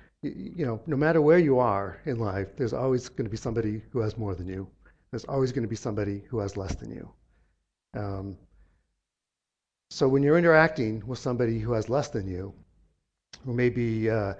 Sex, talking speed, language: male, 190 wpm, English